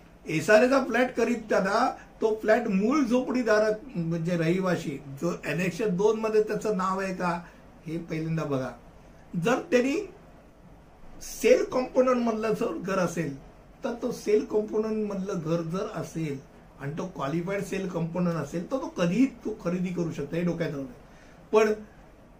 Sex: male